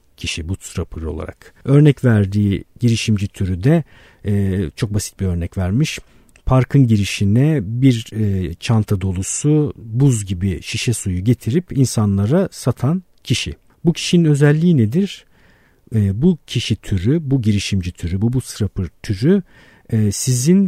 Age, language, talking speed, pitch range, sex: 50-69, Turkish, 130 wpm, 100-140 Hz, male